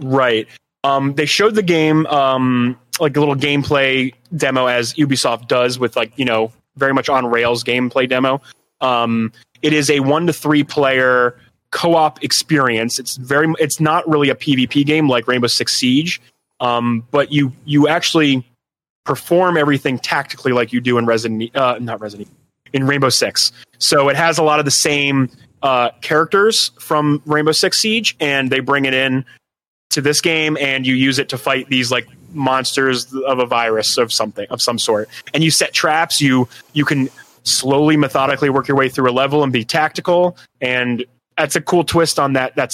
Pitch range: 125-150 Hz